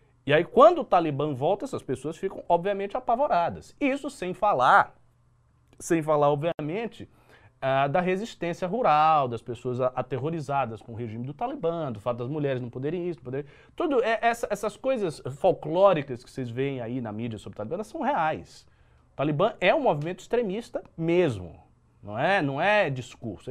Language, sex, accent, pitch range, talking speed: Portuguese, male, Brazilian, 125-195 Hz, 170 wpm